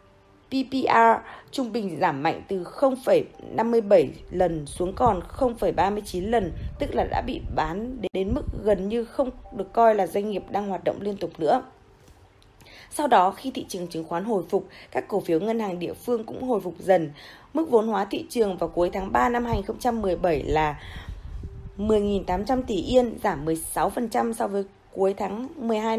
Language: Vietnamese